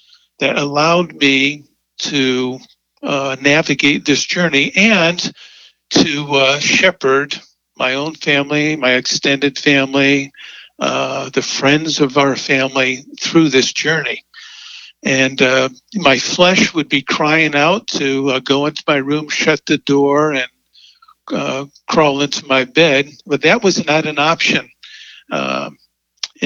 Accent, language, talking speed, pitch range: American, English, 130 wpm, 140-170 Hz